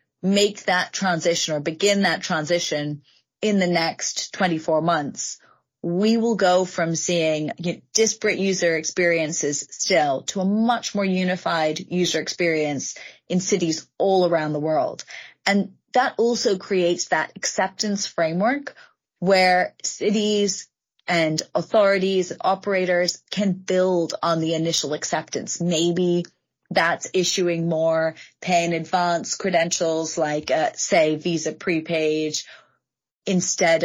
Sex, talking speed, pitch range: female, 115 wpm, 160-190 Hz